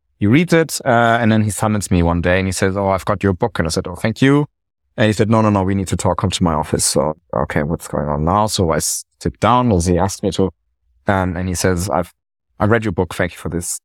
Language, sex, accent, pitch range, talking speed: English, male, German, 85-100 Hz, 290 wpm